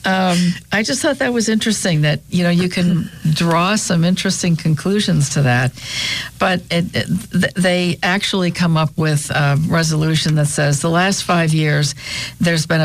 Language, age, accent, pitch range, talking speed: English, 60-79, American, 145-175 Hz, 160 wpm